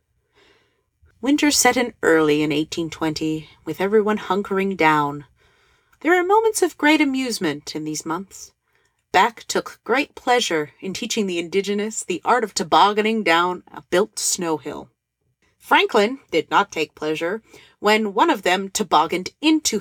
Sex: female